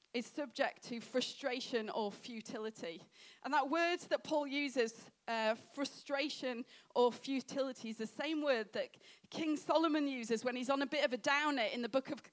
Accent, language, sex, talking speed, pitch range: British, English, female, 175 wpm, 235-290 Hz